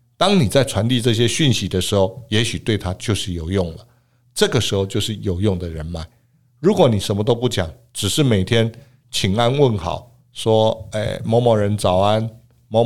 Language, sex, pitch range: Chinese, male, 100-125 Hz